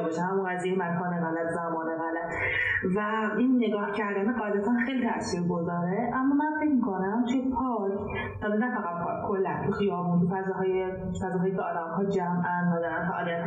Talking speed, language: 145 wpm, Persian